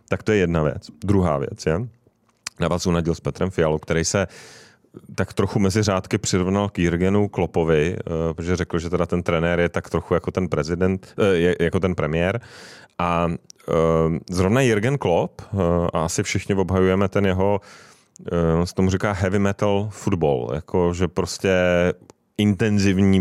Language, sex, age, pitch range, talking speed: Czech, male, 30-49, 90-110 Hz, 150 wpm